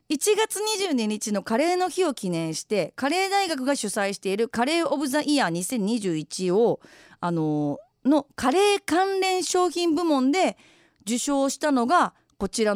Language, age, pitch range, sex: Japanese, 40-59, 195-325 Hz, female